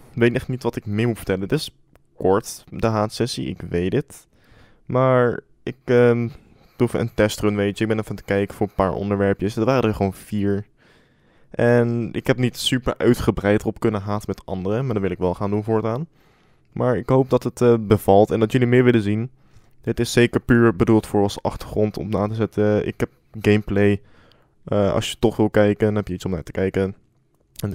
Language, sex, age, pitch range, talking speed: Dutch, male, 20-39, 100-120 Hz, 225 wpm